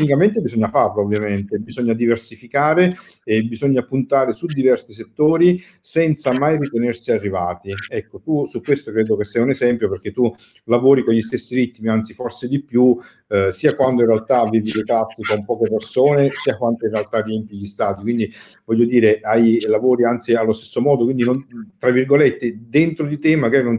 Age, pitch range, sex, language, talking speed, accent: 50-69, 110-140 Hz, male, Italian, 180 wpm, native